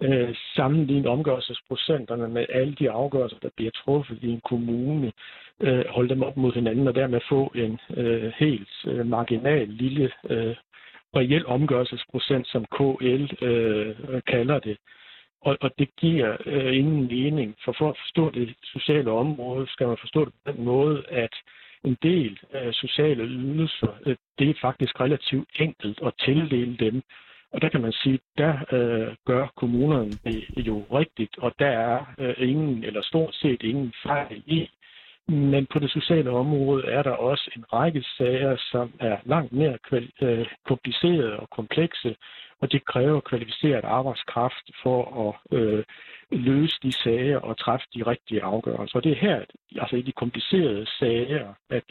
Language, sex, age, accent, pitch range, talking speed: Danish, male, 60-79, native, 120-145 Hz, 160 wpm